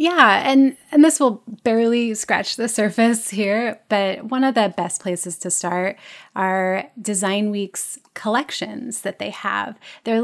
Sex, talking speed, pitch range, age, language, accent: female, 150 wpm, 190-230 Hz, 30-49, English, American